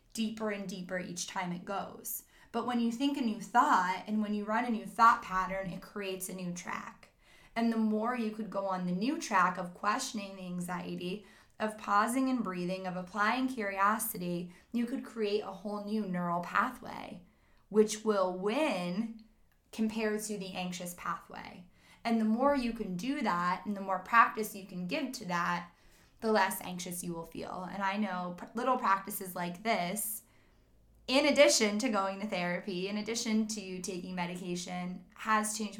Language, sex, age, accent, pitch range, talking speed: English, female, 10-29, American, 185-225 Hz, 180 wpm